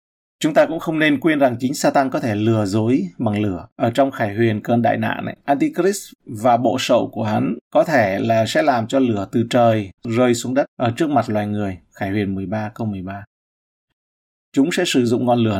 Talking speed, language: 210 wpm, Vietnamese